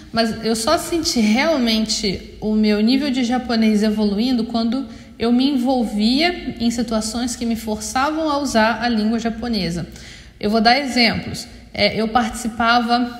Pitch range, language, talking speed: 215-240 Hz, Portuguese, 145 wpm